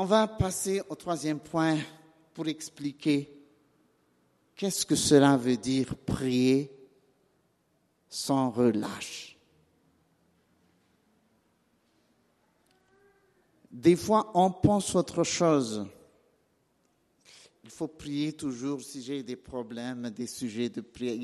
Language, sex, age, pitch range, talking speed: French, male, 50-69, 135-220 Hz, 95 wpm